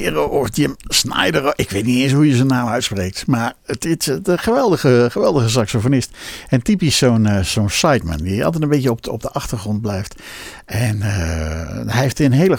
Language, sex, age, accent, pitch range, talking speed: Dutch, male, 60-79, Dutch, 90-120 Hz, 185 wpm